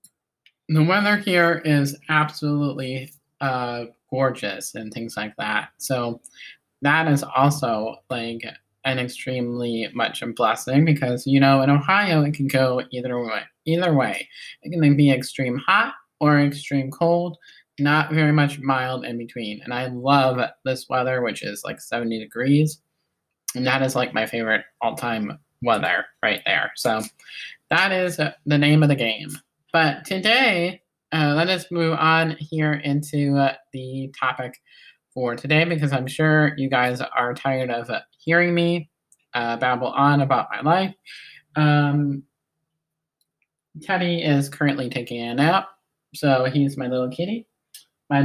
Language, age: English, 20-39